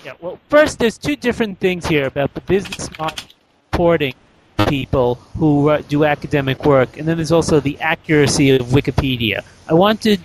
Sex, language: male, English